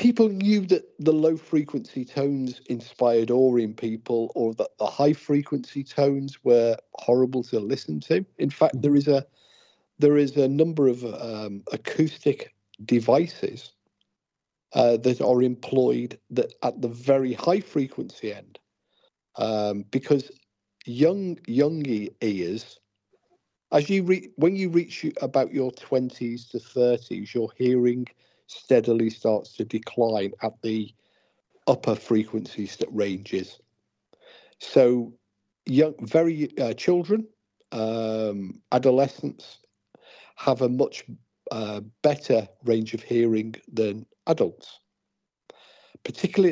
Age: 50-69